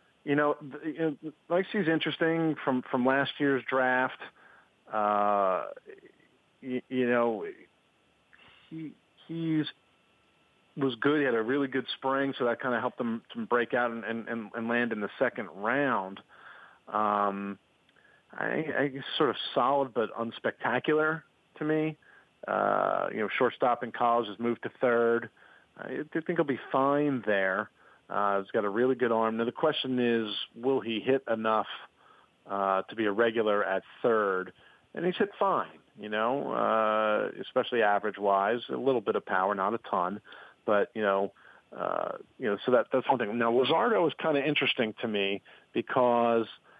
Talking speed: 165 wpm